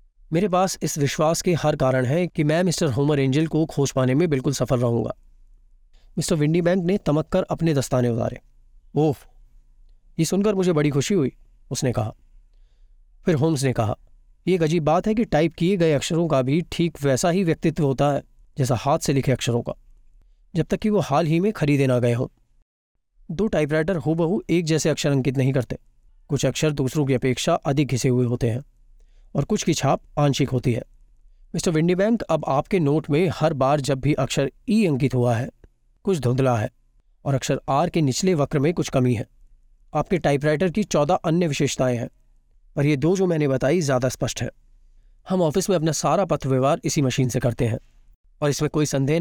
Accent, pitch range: native, 130-170 Hz